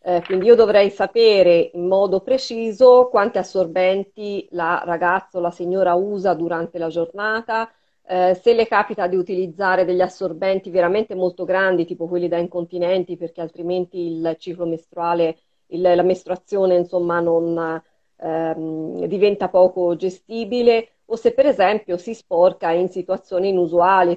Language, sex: Italian, female